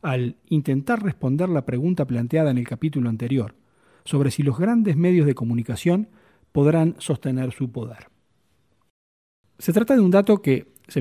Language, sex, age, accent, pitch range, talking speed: Spanish, male, 40-59, Argentinian, 130-185 Hz, 155 wpm